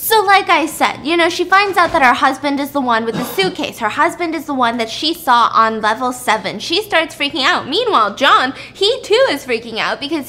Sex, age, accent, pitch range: female, 10-29, American, 220-320 Hz